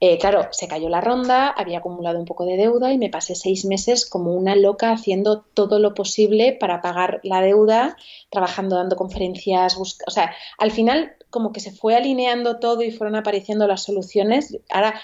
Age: 30-49